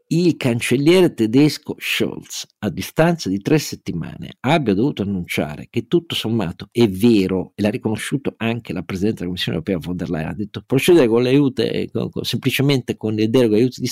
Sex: male